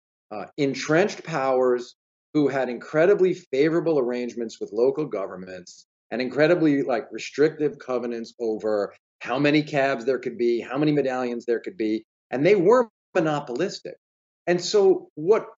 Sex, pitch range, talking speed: male, 125-185 Hz, 140 wpm